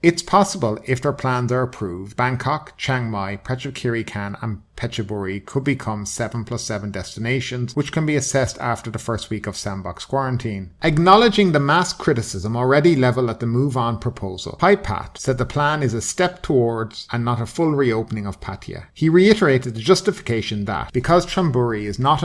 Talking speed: 175 wpm